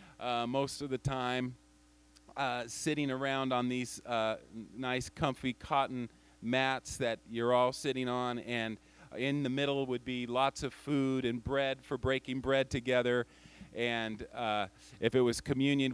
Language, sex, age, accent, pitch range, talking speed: English, male, 40-59, American, 110-140 Hz, 155 wpm